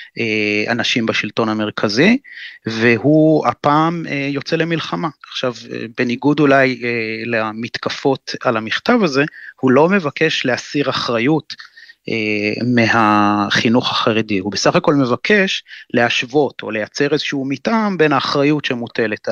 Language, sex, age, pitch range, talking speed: Hebrew, male, 30-49, 115-145 Hz, 110 wpm